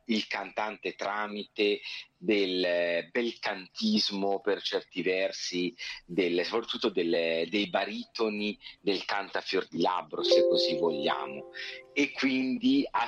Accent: native